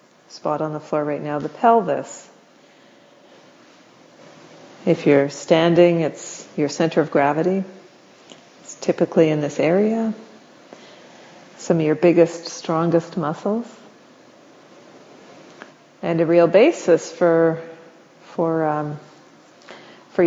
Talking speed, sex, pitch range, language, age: 105 wpm, female, 155-195 Hz, English, 40-59